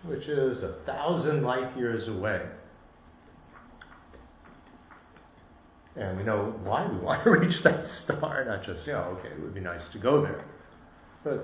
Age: 50-69